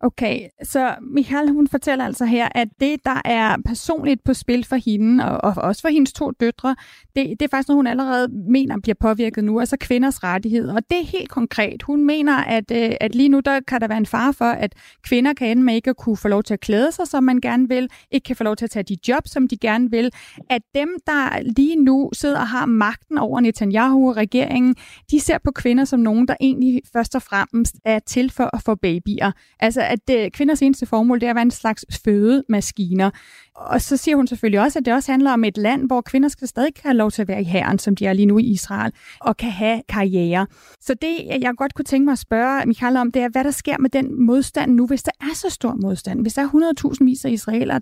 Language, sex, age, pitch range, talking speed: Danish, female, 30-49, 220-270 Hz, 240 wpm